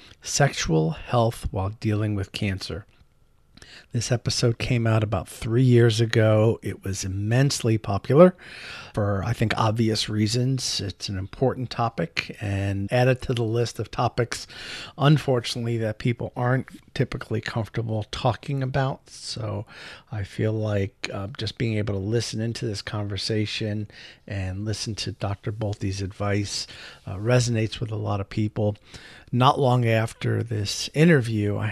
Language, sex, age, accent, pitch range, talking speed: English, male, 50-69, American, 100-120 Hz, 140 wpm